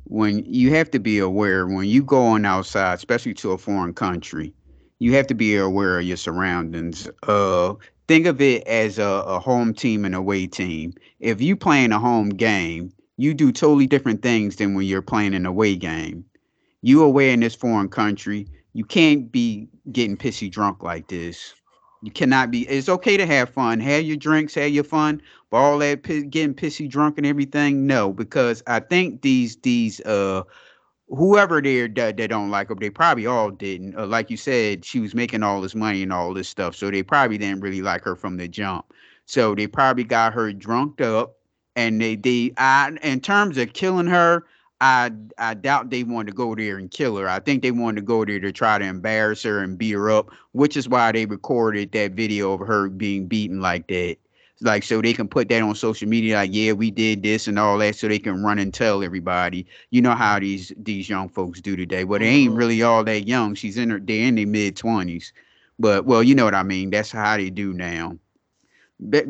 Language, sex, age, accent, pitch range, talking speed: English, male, 30-49, American, 95-130 Hz, 215 wpm